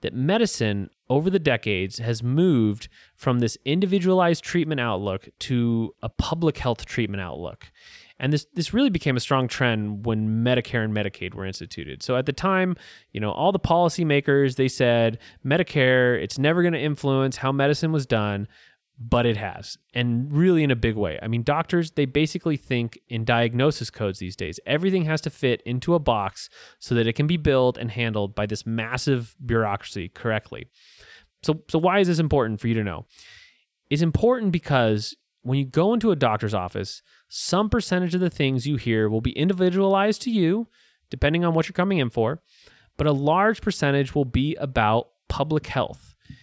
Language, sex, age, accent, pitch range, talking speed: English, male, 20-39, American, 115-160 Hz, 180 wpm